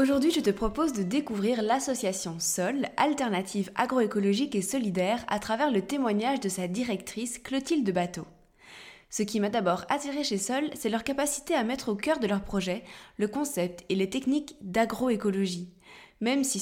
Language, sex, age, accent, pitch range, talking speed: French, female, 20-39, French, 190-245 Hz, 165 wpm